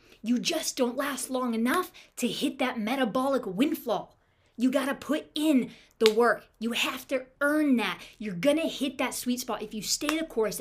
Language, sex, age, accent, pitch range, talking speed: English, female, 20-39, American, 205-265 Hz, 185 wpm